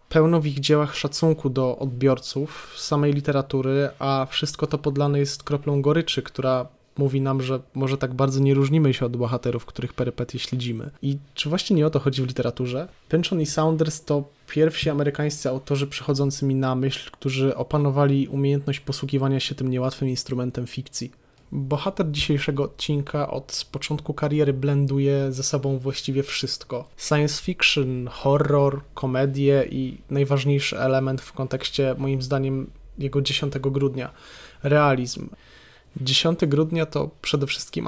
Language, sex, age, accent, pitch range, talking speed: Polish, male, 20-39, native, 130-145 Hz, 145 wpm